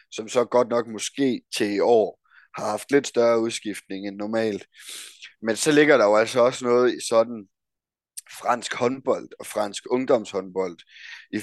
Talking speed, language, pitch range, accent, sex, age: 165 wpm, Danish, 105-120 Hz, native, male, 20-39